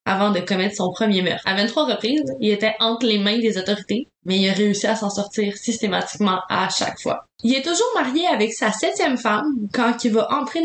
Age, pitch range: 10-29, 215-270 Hz